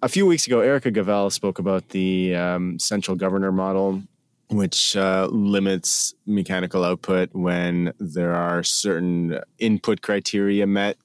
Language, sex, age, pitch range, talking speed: English, male, 30-49, 90-100 Hz, 135 wpm